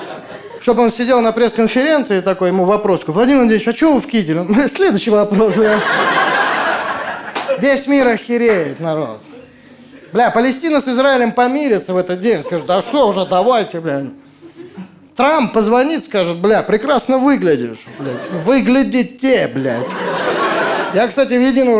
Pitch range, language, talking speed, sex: 195-265 Hz, Russian, 135 wpm, male